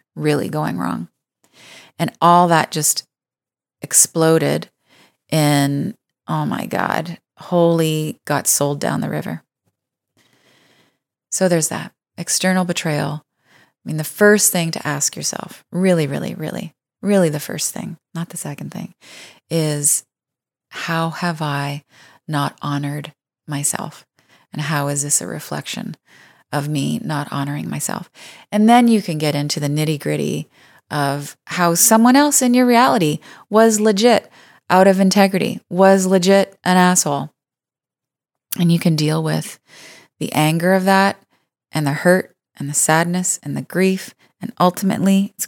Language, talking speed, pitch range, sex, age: English, 140 wpm, 150-190 Hz, female, 30-49